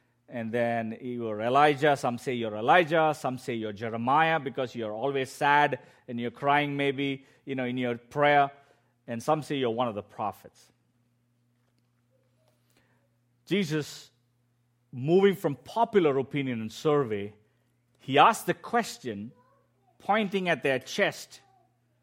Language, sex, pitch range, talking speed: English, male, 120-140 Hz, 130 wpm